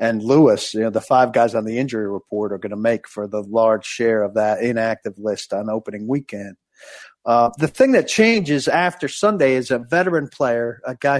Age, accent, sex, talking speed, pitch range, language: 50-69, American, male, 210 wpm, 115-145 Hz, English